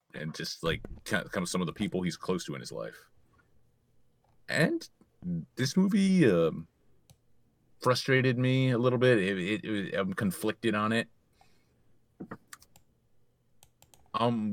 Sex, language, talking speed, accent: male, English, 130 wpm, American